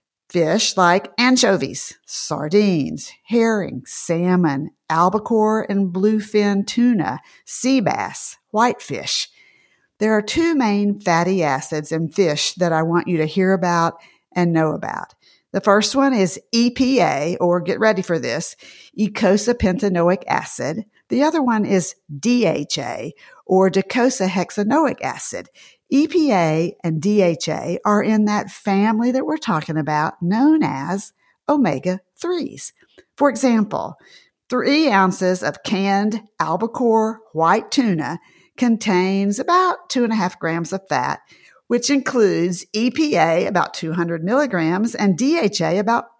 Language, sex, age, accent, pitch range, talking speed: English, female, 50-69, American, 175-240 Hz, 120 wpm